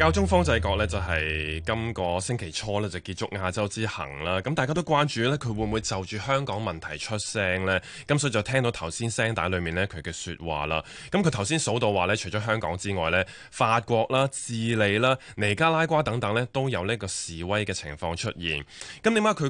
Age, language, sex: 20-39, Chinese, male